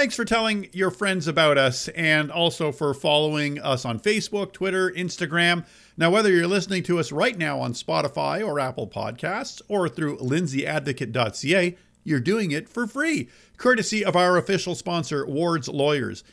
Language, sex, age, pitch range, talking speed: English, male, 50-69, 115-170 Hz, 160 wpm